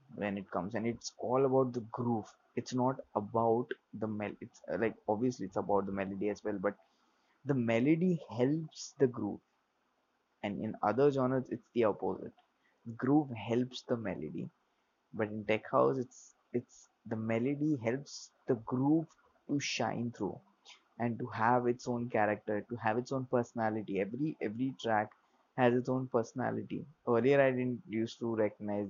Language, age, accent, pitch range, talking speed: English, 20-39, Indian, 105-125 Hz, 160 wpm